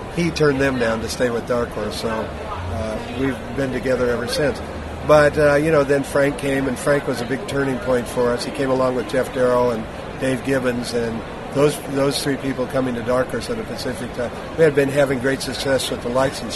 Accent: American